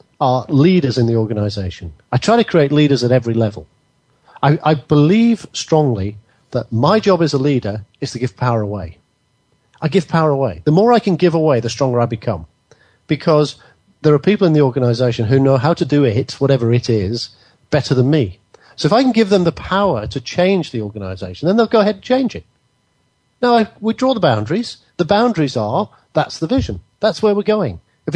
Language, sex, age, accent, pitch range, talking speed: English, male, 40-59, British, 115-170 Hz, 205 wpm